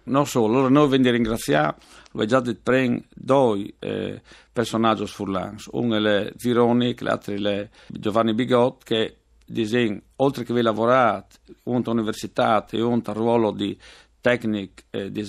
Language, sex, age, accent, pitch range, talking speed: Italian, male, 50-69, native, 110-135 Hz, 125 wpm